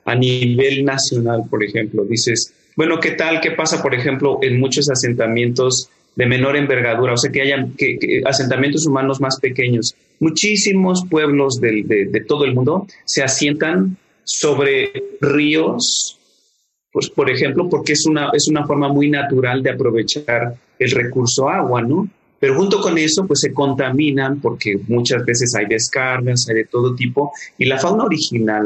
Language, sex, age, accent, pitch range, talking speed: Spanish, male, 30-49, Mexican, 125-150 Hz, 165 wpm